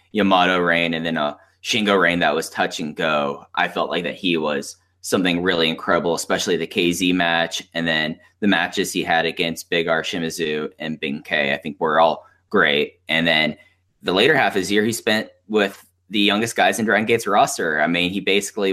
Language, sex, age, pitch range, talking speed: English, male, 10-29, 85-100 Hz, 205 wpm